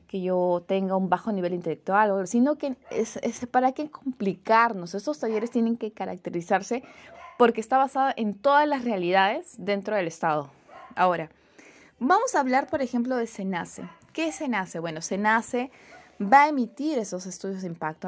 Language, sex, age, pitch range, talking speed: Spanish, female, 20-39, 185-260 Hz, 165 wpm